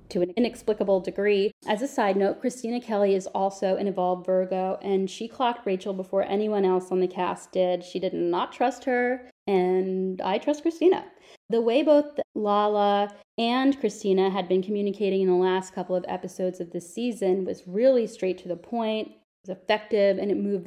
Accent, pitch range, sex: American, 185-215 Hz, female